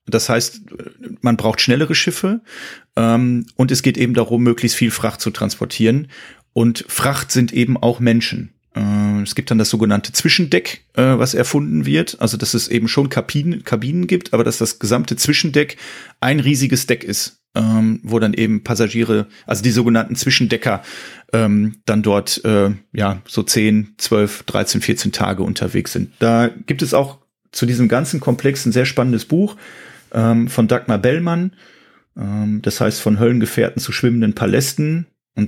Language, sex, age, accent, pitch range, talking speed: German, male, 30-49, German, 110-130 Hz, 160 wpm